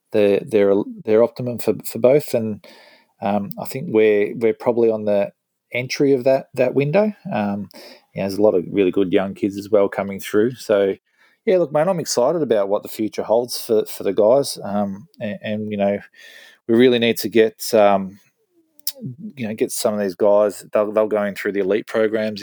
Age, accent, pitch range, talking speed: 20-39, Australian, 100-120 Hz, 205 wpm